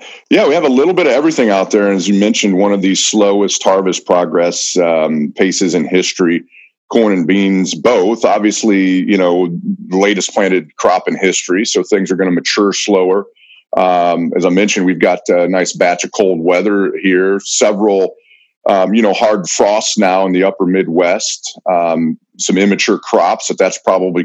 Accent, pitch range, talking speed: American, 90-105 Hz, 190 wpm